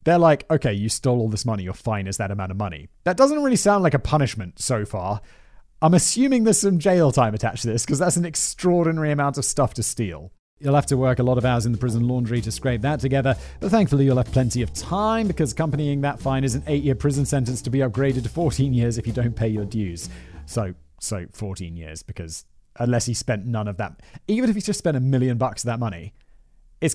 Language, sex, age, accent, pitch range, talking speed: English, male, 30-49, British, 105-145 Hz, 245 wpm